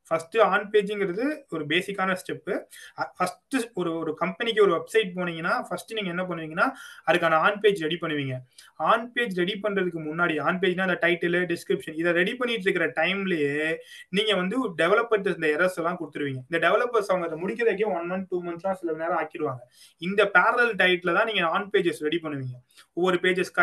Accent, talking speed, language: native, 110 wpm, Tamil